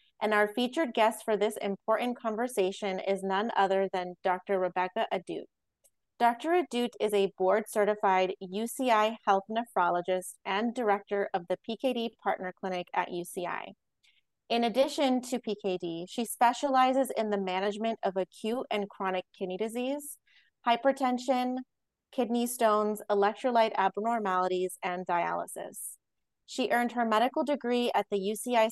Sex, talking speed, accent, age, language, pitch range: female, 130 wpm, American, 30-49, English, 185-235 Hz